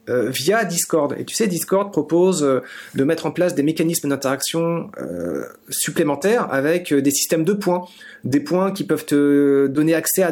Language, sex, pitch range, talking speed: French, male, 150-200 Hz, 185 wpm